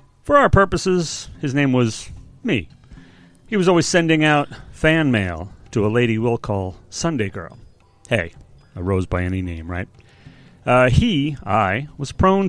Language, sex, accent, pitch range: English, male, American, 105-150 Hz